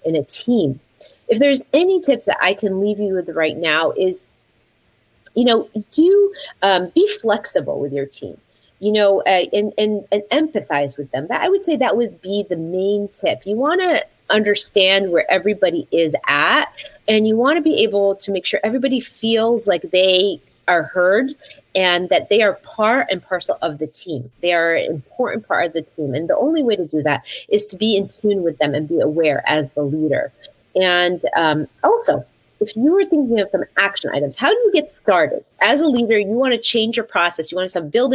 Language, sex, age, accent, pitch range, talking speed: English, female, 30-49, American, 175-275 Hz, 210 wpm